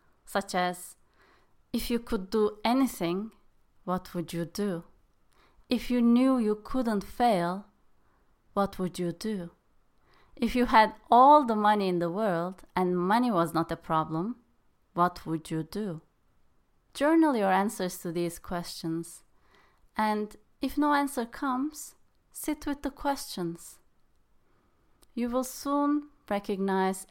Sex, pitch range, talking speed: female, 180-240 Hz, 130 wpm